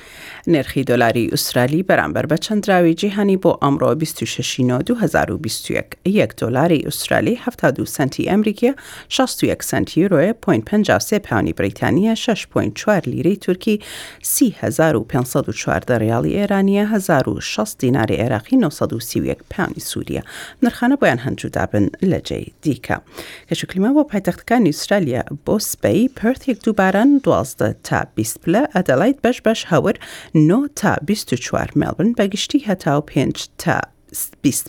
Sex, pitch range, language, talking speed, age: female, 155-230 Hz, English, 125 wpm, 40-59